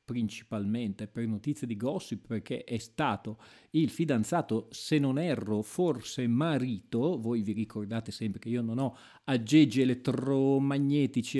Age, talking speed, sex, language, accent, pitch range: 40-59, 130 wpm, male, Italian, native, 110-150 Hz